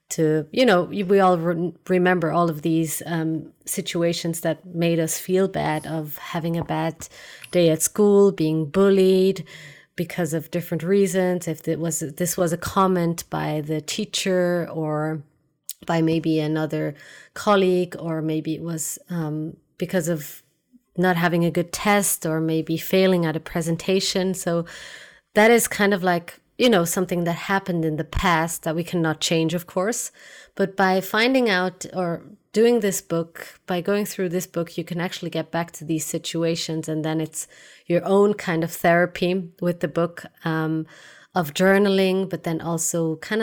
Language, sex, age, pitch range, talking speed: English, female, 30-49, 160-185 Hz, 165 wpm